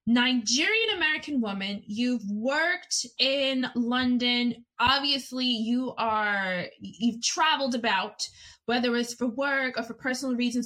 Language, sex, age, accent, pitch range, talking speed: English, female, 20-39, American, 220-275 Hz, 120 wpm